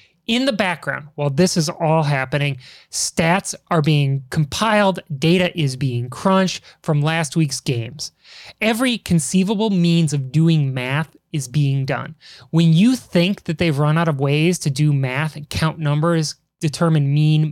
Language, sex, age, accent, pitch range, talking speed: English, male, 20-39, American, 150-180 Hz, 160 wpm